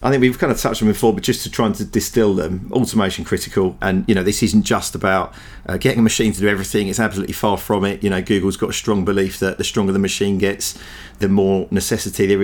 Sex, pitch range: male, 95-105 Hz